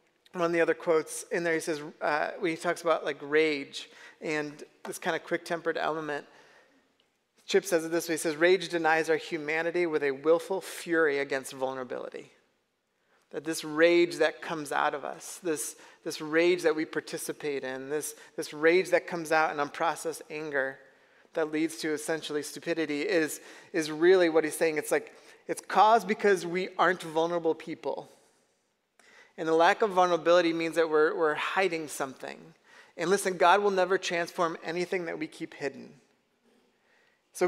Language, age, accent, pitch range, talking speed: English, 30-49, American, 155-185 Hz, 170 wpm